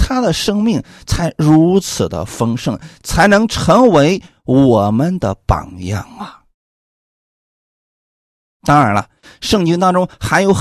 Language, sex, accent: Chinese, male, native